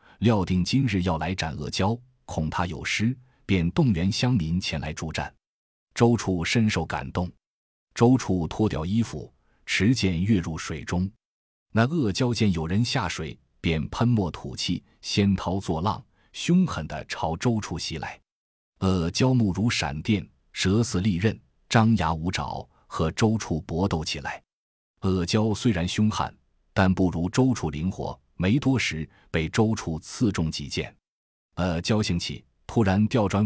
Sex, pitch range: male, 85-110 Hz